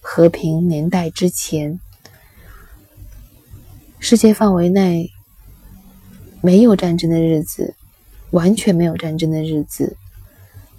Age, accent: 20-39, native